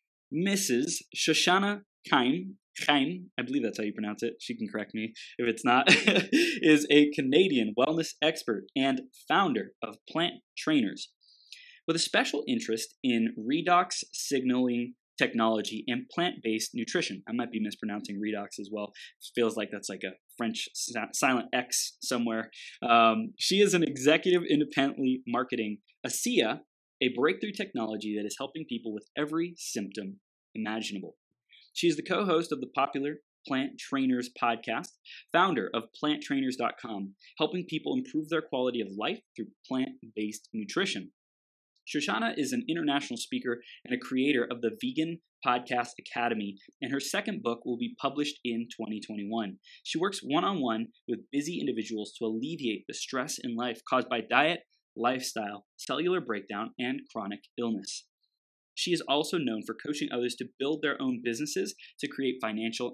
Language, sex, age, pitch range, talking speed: English, male, 20-39, 110-160 Hz, 145 wpm